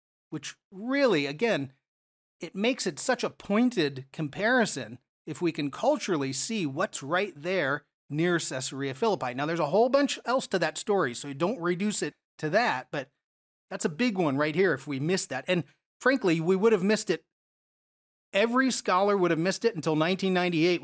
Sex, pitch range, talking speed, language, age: male, 155-230 Hz, 180 wpm, English, 40-59